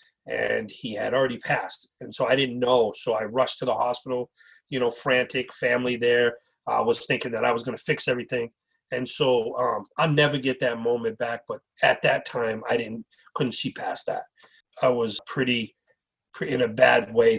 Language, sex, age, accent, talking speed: English, male, 30-49, American, 195 wpm